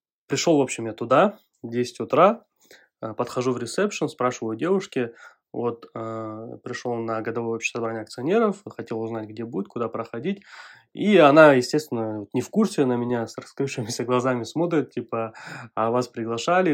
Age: 20-39